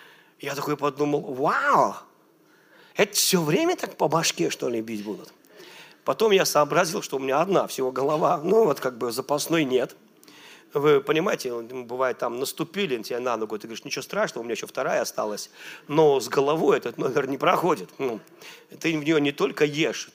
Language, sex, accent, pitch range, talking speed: Russian, male, native, 135-185 Hz, 180 wpm